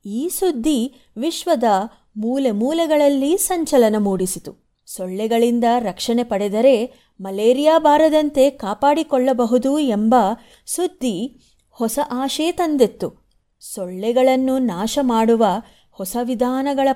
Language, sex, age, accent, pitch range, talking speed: Kannada, female, 30-49, native, 210-270 Hz, 80 wpm